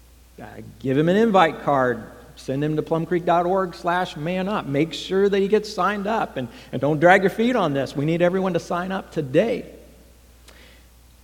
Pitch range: 130-190 Hz